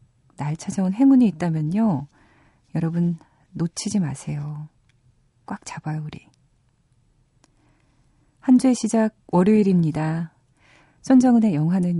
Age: 40-59